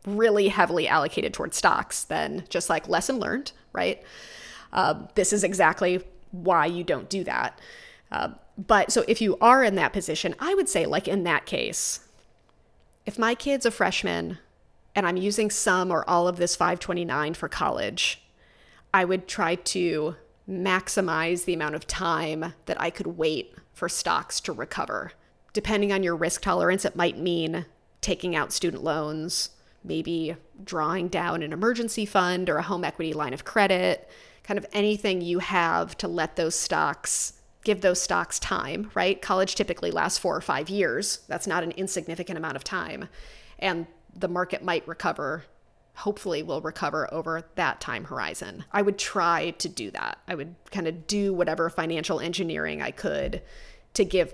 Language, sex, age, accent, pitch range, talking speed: English, female, 30-49, American, 170-205 Hz, 170 wpm